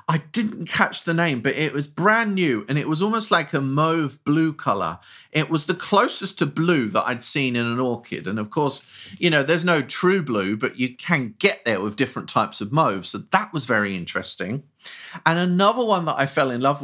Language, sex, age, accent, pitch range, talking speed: English, male, 30-49, British, 140-185 Hz, 225 wpm